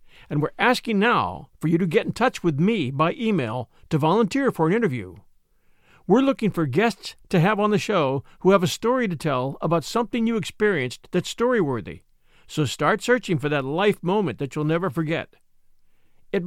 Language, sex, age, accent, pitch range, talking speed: English, male, 50-69, American, 145-215 Hz, 190 wpm